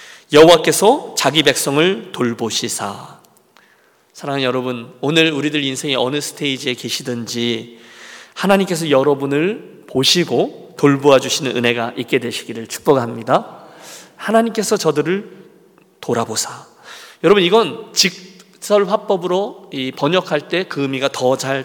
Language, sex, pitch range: Korean, male, 130-195 Hz